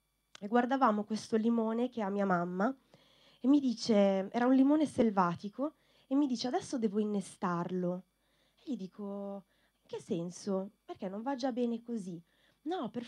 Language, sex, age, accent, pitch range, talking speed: Italian, female, 20-39, native, 195-275 Hz, 160 wpm